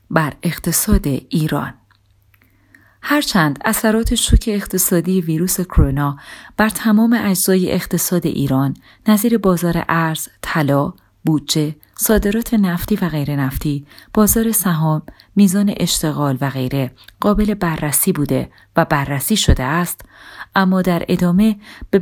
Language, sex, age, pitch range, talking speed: Persian, female, 30-49, 145-205 Hz, 110 wpm